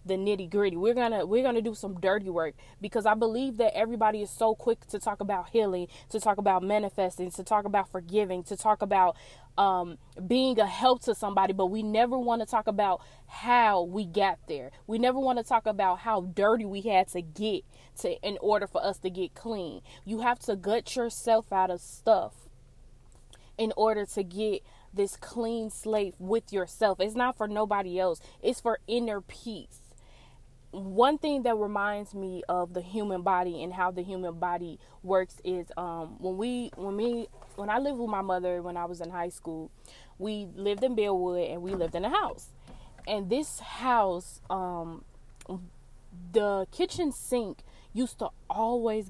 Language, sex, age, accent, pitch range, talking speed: English, female, 20-39, American, 175-220 Hz, 185 wpm